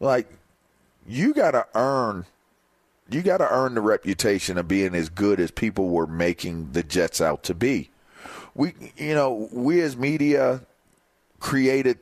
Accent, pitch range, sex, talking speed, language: American, 110-140 Hz, male, 155 wpm, English